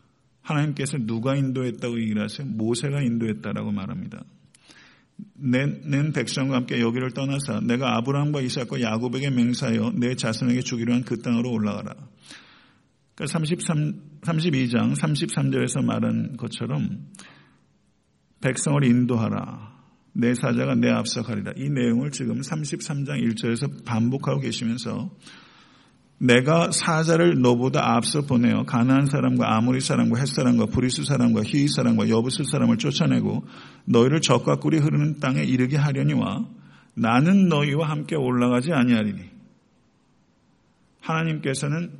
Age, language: 50-69, Korean